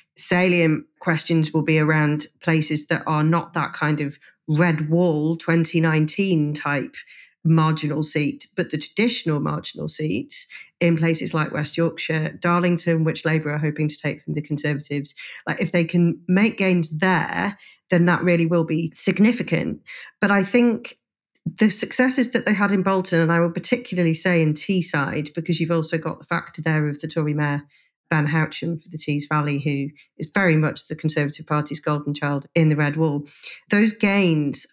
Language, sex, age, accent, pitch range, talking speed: English, female, 40-59, British, 155-180 Hz, 175 wpm